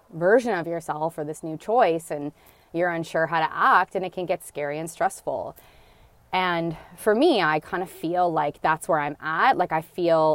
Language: English